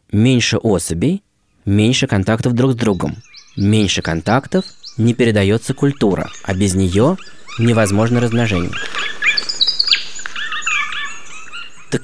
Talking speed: 90 wpm